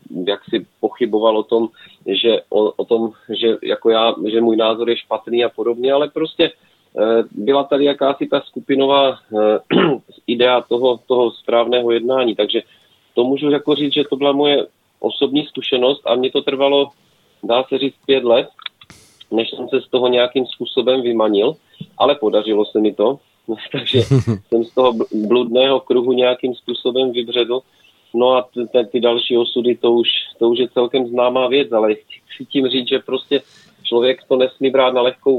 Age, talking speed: 40-59, 155 wpm